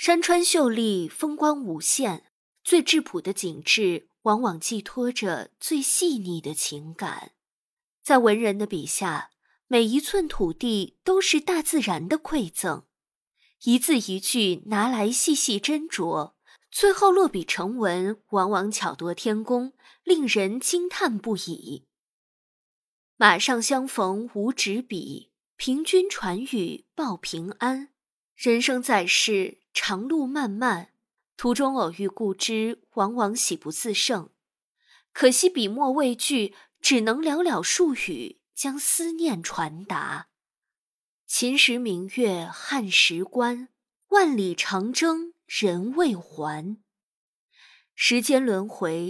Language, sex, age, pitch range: Chinese, female, 20-39, 195-295 Hz